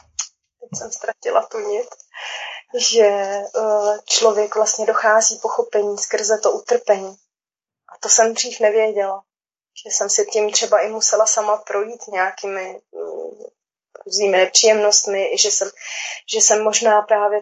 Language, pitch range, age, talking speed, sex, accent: Czech, 205-225 Hz, 20-39, 135 wpm, female, native